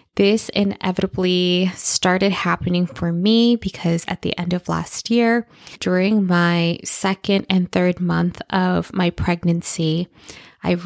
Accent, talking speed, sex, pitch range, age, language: American, 125 wpm, female, 170-195 Hz, 20-39, English